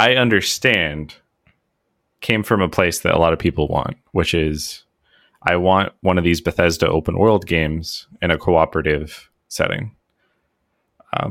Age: 30-49